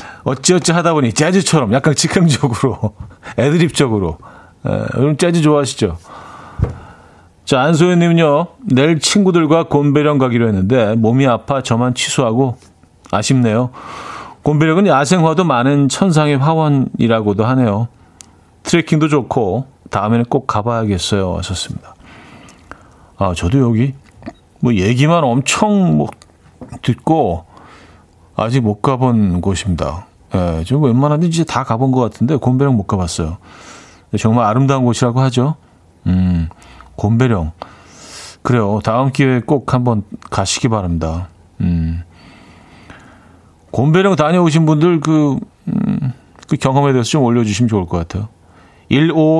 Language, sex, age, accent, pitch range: Korean, male, 40-59, native, 100-150 Hz